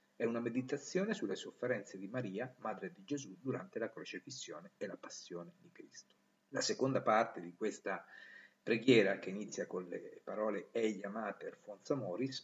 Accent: native